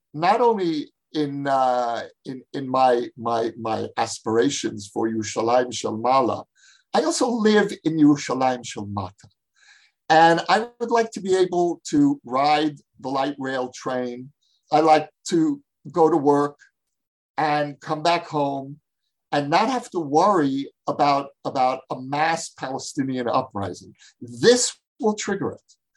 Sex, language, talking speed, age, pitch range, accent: male, English, 130 wpm, 50-69, 130-180 Hz, American